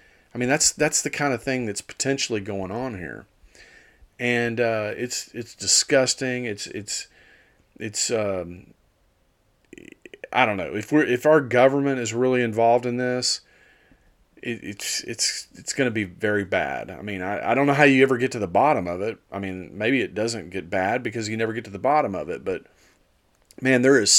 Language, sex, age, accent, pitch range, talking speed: English, male, 40-59, American, 110-145 Hz, 195 wpm